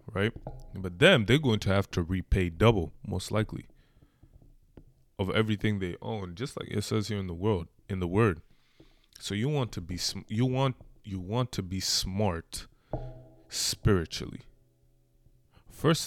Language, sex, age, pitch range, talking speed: English, male, 20-39, 90-115 Hz, 155 wpm